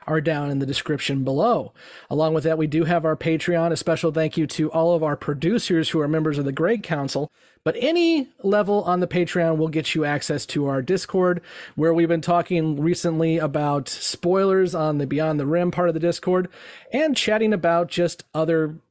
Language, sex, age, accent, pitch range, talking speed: English, male, 30-49, American, 145-185 Hz, 205 wpm